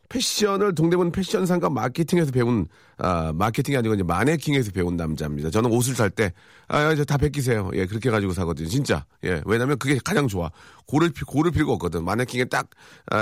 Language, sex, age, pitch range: Korean, male, 40-59, 95-145 Hz